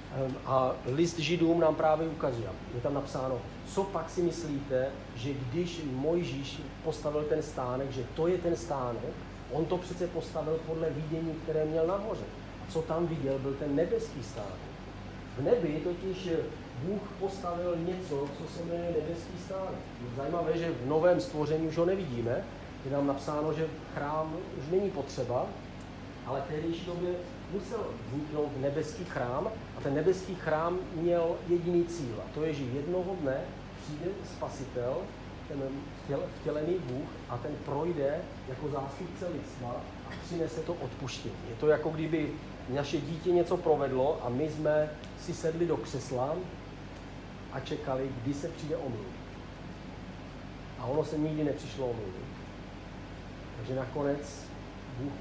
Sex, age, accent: male, 40-59, native